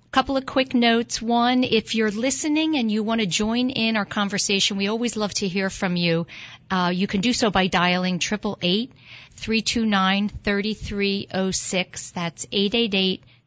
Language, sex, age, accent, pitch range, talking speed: English, female, 50-69, American, 175-215 Hz, 145 wpm